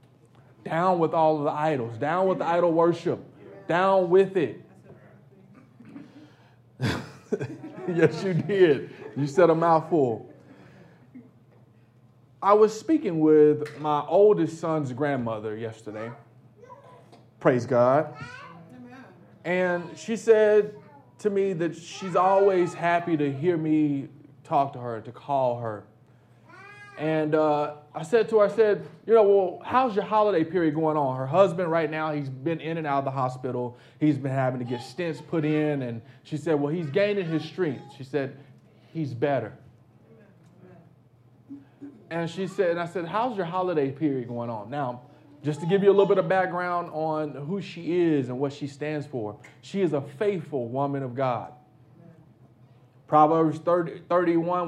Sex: male